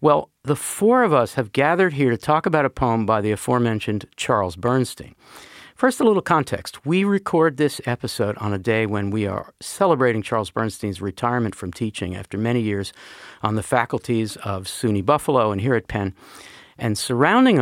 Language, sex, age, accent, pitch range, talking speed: English, male, 50-69, American, 105-135 Hz, 180 wpm